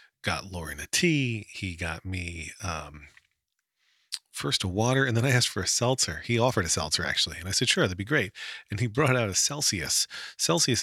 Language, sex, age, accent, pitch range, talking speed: English, male, 40-59, American, 90-125 Hz, 205 wpm